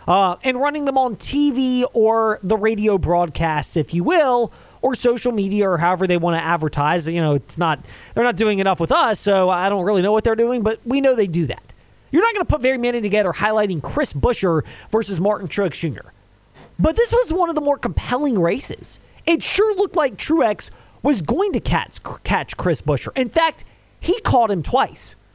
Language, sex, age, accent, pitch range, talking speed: English, male, 30-49, American, 185-260 Hz, 210 wpm